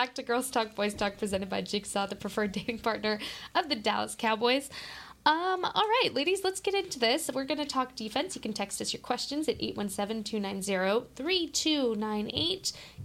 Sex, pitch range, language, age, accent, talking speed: female, 215-295 Hz, English, 10-29, American, 175 wpm